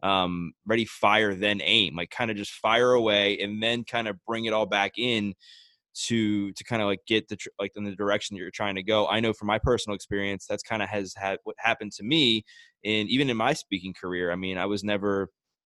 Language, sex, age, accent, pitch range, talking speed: English, male, 20-39, American, 100-115 Hz, 240 wpm